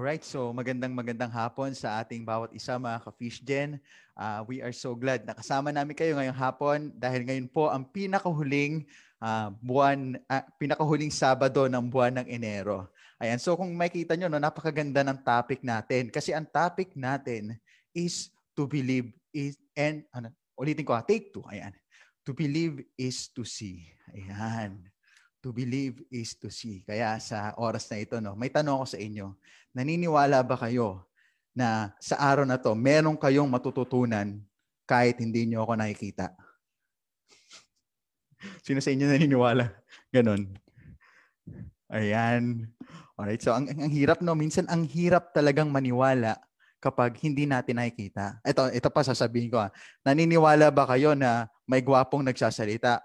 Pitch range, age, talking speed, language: 115-145 Hz, 20-39, 150 wpm, Filipino